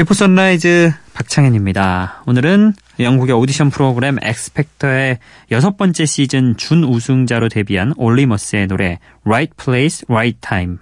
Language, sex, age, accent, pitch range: Korean, male, 20-39, native, 105-145 Hz